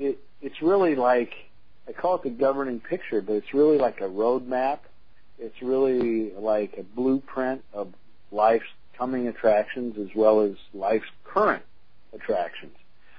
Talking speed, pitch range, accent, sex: 140 wpm, 115-155 Hz, American, male